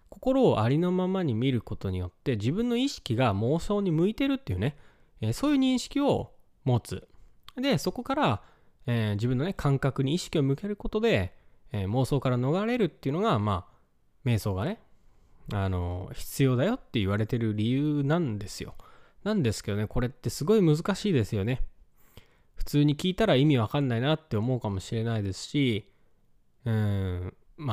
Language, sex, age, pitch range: Japanese, male, 20-39, 105-165 Hz